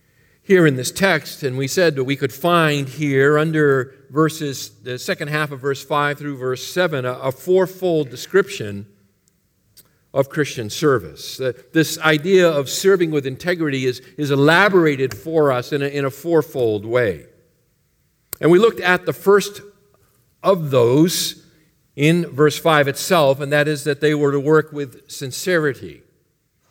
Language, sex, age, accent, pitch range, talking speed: English, male, 50-69, American, 130-165 Hz, 155 wpm